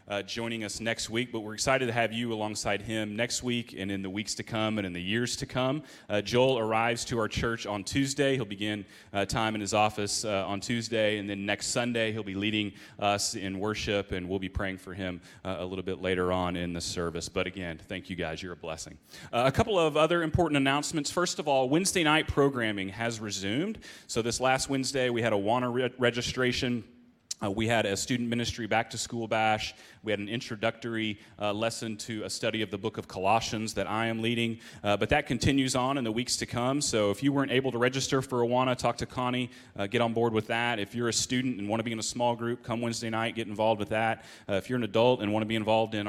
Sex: male